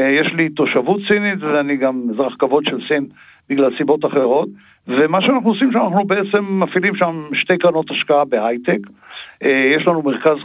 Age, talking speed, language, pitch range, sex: 60-79, 155 wpm, Hebrew, 145-195 Hz, male